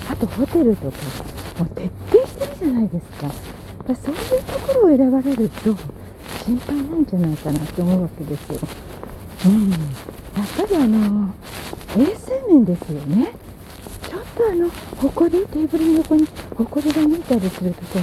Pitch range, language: 185-295 Hz, Japanese